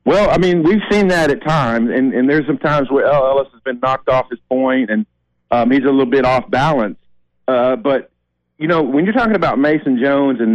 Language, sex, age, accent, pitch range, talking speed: English, male, 40-59, American, 110-145 Hz, 230 wpm